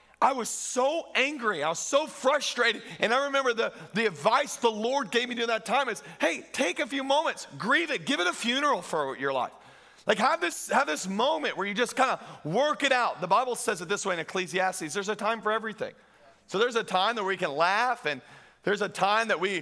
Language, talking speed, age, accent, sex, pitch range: English, 230 wpm, 40-59, American, male, 185-235 Hz